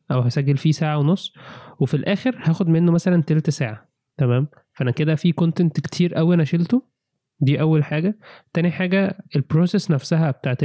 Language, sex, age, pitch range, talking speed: Arabic, male, 20-39, 135-165 Hz, 165 wpm